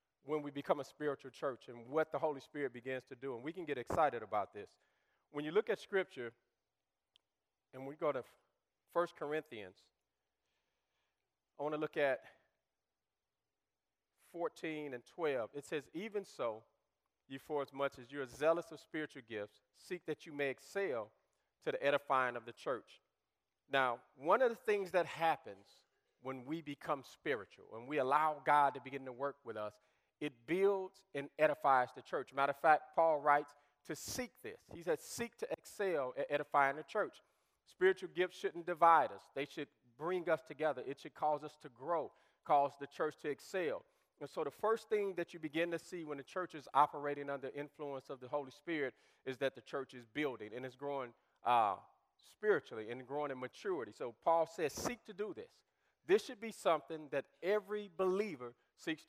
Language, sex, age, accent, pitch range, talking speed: English, male, 40-59, American, 140-180 Hz, 185 wpm